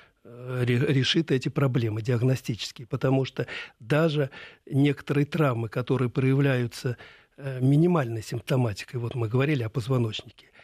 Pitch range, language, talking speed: 125-145 Hz, Russian, 100 wpm